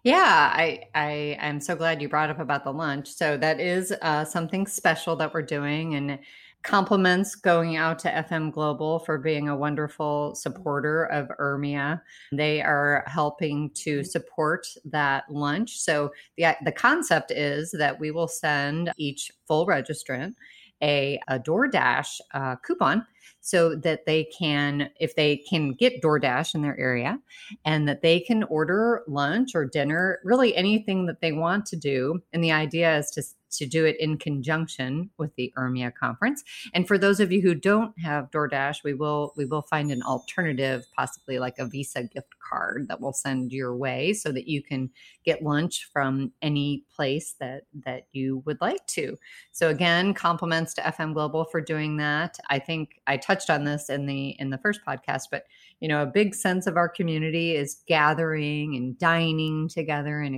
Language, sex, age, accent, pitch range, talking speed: English, female, 30-49, American, 145-170 Hz, 180 wpm